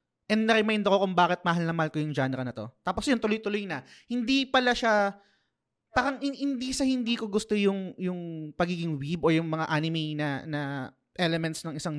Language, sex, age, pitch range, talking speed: Filipino, male, 20-39, 150-210 Hz, 200 wpm